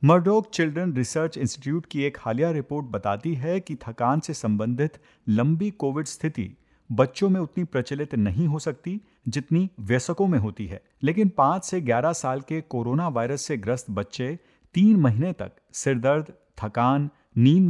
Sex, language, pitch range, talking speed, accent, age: male, Hindi, 120-165 Hz, 155 wpm, native, 50-69